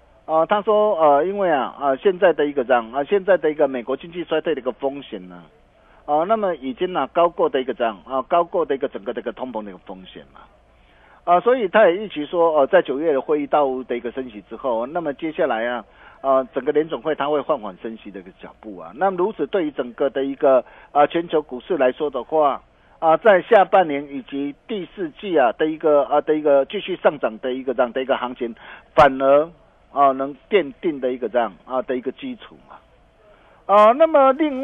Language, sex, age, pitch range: Chinese, male, 50-69, 130-175 Hz